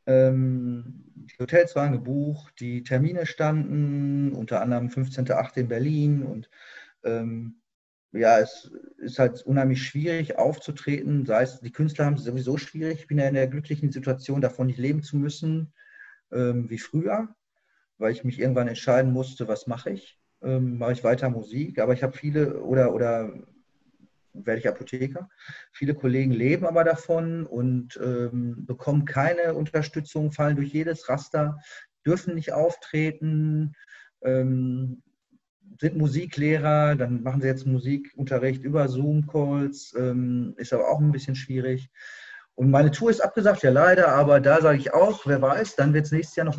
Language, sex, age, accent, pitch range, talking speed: German, male, 40-59, German, 130-155 Hz, 155 wpm